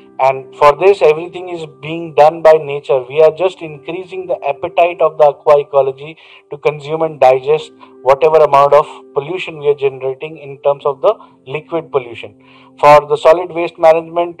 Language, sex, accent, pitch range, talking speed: Hindi, male, native, 130-160 Hz, 170 wpm